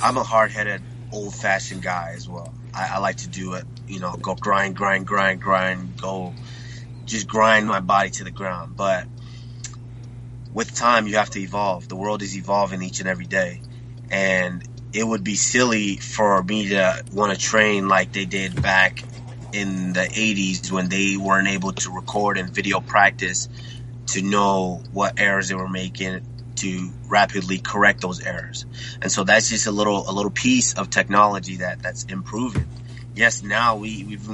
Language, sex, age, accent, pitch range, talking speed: English, male, 20-39, American, 95-120 Hz, 175 wpm